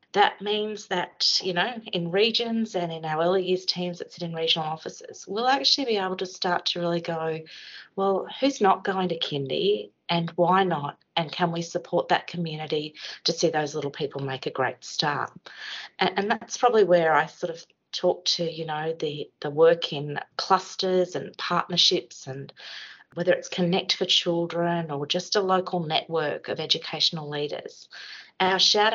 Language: English